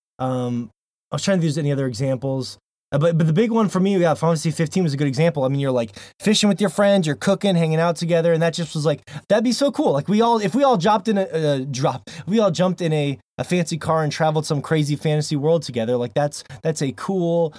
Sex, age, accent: male, 20-39, American